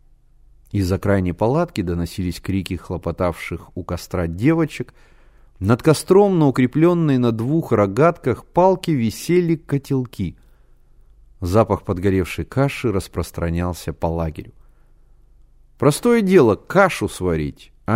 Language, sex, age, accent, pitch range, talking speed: Russian, male, 30-49, native, 90-145 Hz, 95 wpm